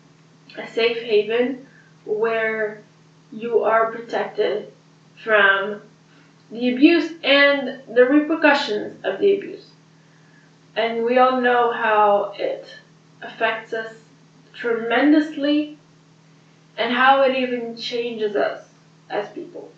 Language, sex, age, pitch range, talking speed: English, female, 10-29, 160-265 Hz, 100 wpm